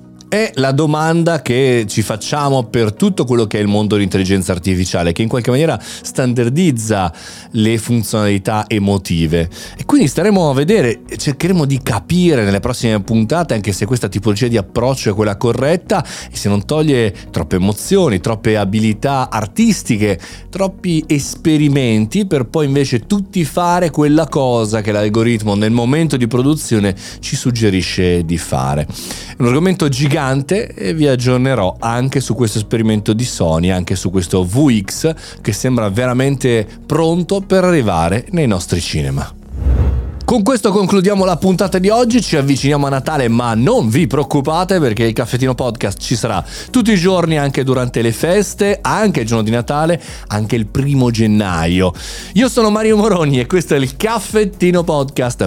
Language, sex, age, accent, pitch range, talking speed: Italian, male, 30-49, native, 105-155 Hz, 155 wpm